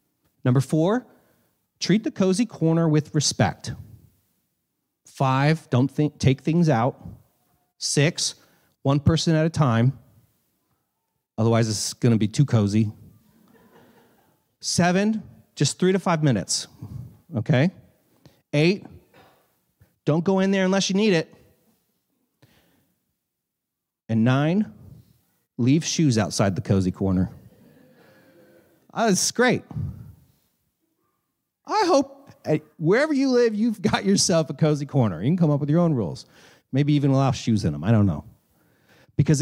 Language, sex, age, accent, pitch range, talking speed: English, male, 30-49, American, 115-165 Hz, 125 wpm